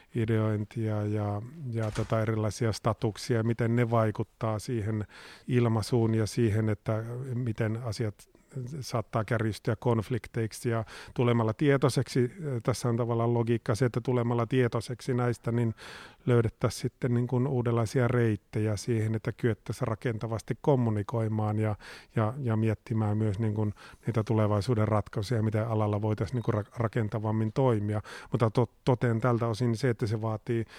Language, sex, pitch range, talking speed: Finnish, male, 110-125 Hz, 115 wpm